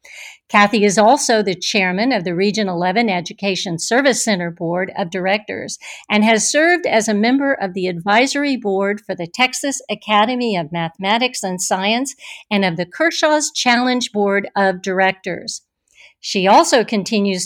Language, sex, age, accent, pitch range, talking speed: English, female, 60-79, American, 195-255 Hz, 150 wpm